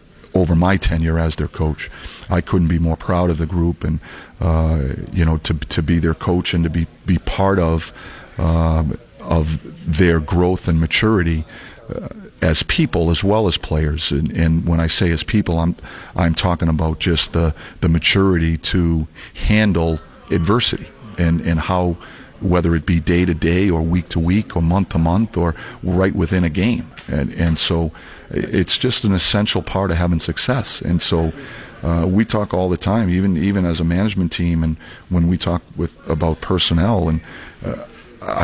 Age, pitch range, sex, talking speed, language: 40-59, 80-90 Hz, male, 180 wpm, English